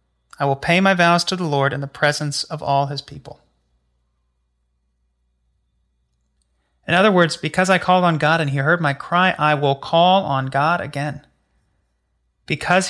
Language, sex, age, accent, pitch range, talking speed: English, male, 30-49, American, 120-165 Hz, 165 wpm